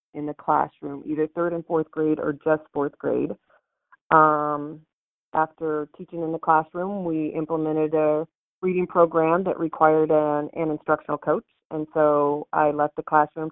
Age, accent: 30-49, American